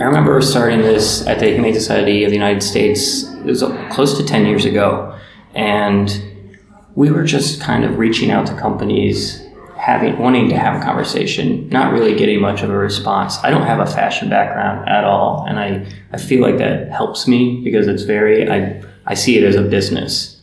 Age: 20-39